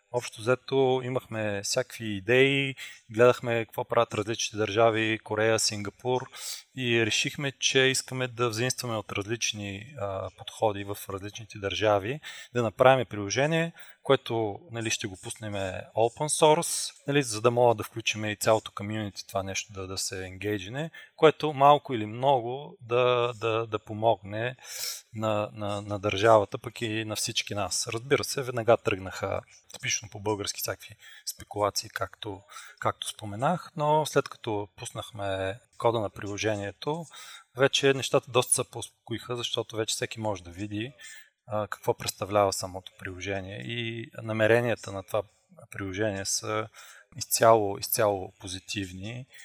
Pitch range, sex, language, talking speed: 100-125 Hz, male, Bulgarian, 130 wpm